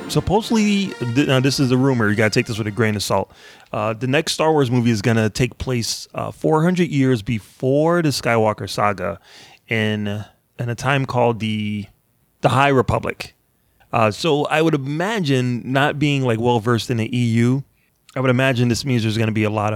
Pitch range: 110-135 Hz